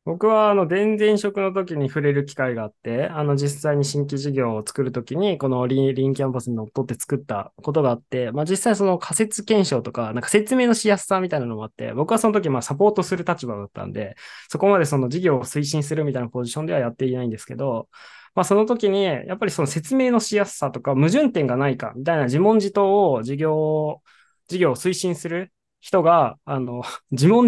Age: 20-39